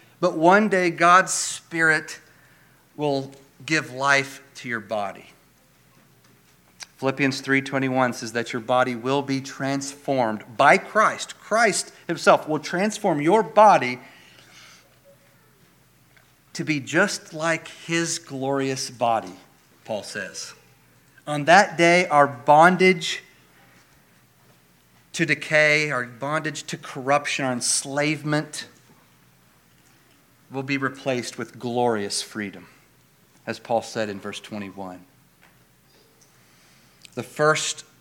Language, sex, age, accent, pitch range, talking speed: English, male, 40-59, American, 120-155 Hz, 100 wpm